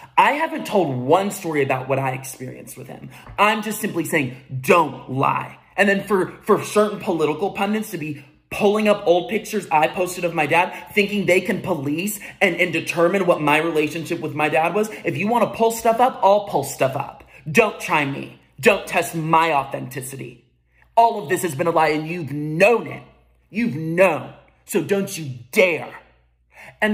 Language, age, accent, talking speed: English, 30-49, American, 185 wpm